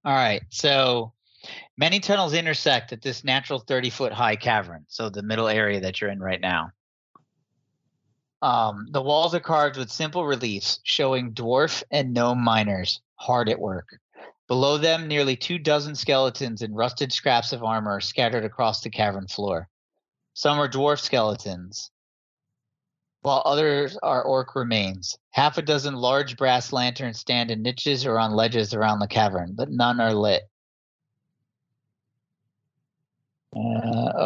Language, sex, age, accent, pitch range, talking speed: English, male, 40-59, American, 105-140 Hz, 140 wpm